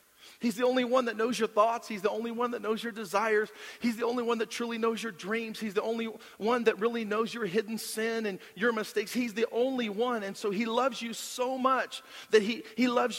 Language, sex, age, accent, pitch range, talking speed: English, male, 40-59, American, 210-245 Hz, 240 wpm